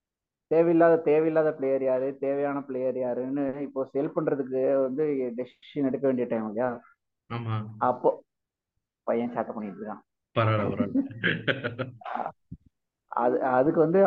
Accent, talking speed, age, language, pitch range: native, 80 wpm, 20-39, Tamil, 125-150 Hz